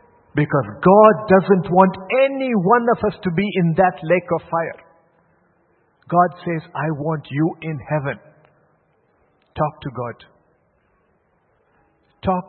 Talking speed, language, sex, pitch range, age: 125 wpm, English, male, 160-215 Hz, 60-79